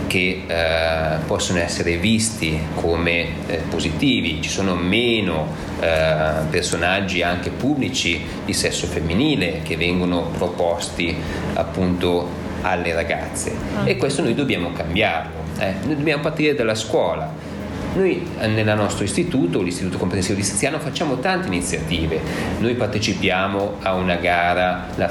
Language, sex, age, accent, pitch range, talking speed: Italian, male, 30-49, native, 85-100 Hz, 125 wpm